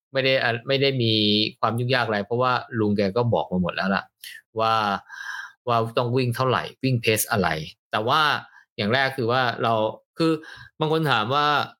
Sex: male